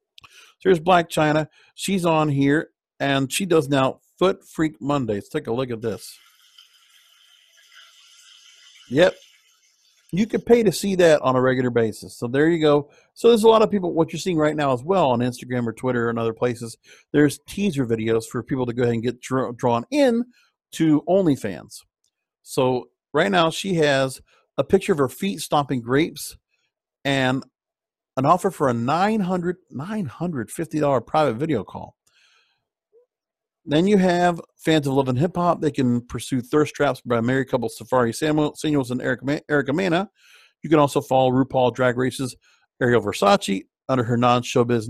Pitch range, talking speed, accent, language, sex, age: 125-185 Hz, 170 wpm, American, English, male, 50-69